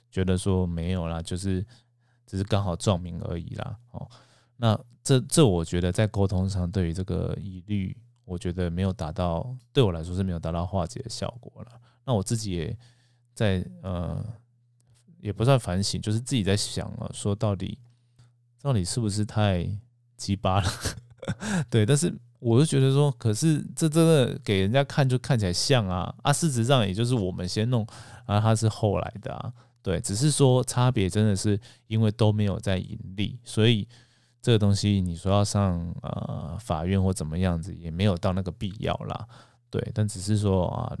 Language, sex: Chinese, male